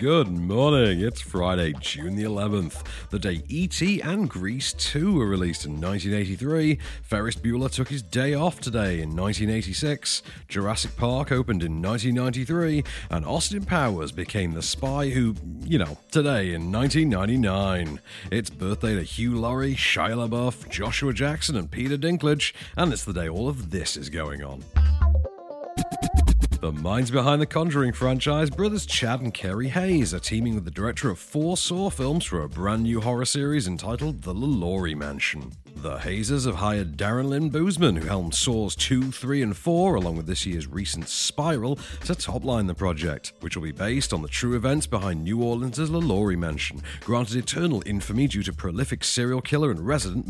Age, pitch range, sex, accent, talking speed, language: 40-59, 90-140 Hz, male, British, 170 wpm, English